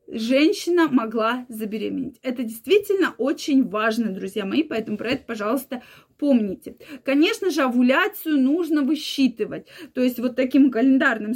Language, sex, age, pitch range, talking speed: Russian, female, 20-39, 240-310 Hz, 125 wpm